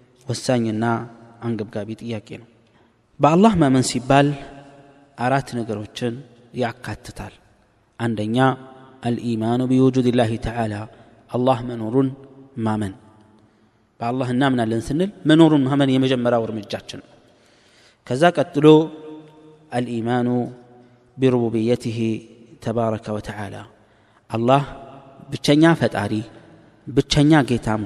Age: 30-49